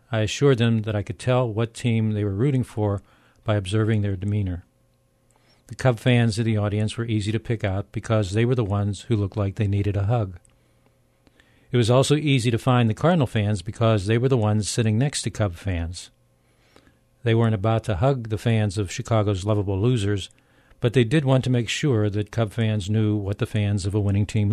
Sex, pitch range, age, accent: male, 100-120 Hz, 50-69, American